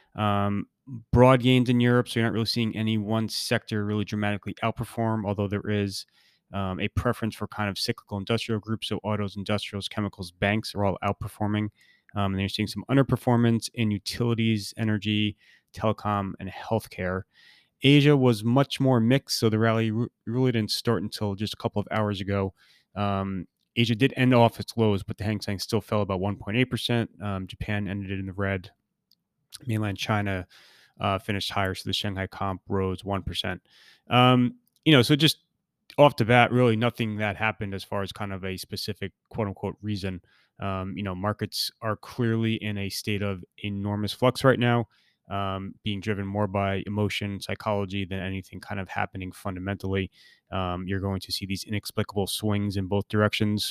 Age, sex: 30-49, male